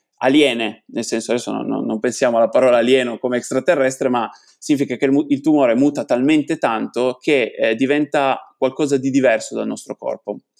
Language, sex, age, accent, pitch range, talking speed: Italian, male, 20-39, native, 120-150 Hz, 170 wpm